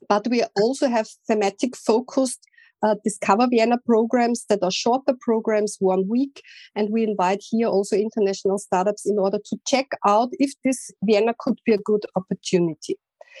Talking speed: 155 wpm